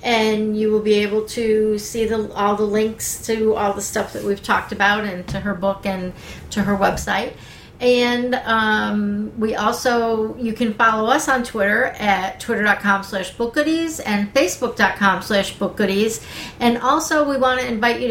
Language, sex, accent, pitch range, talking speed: English, female, American, 200-235 Hz, 170 wpm